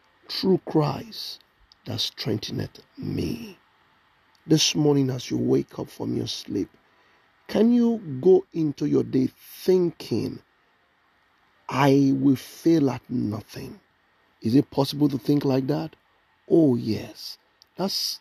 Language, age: English, 50-69